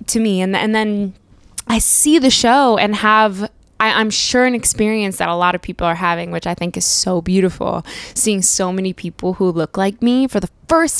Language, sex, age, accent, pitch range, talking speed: English, female, 10-29, American, 175-210 Hz, 220 wpm